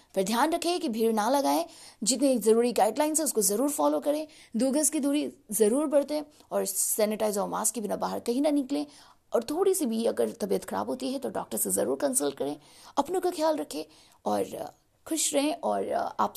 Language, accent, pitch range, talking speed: Hindi, native, 210-295 Hz, 205 wpm